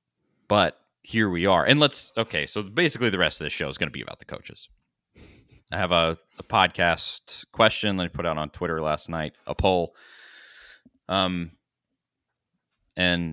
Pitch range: 85-125 Hz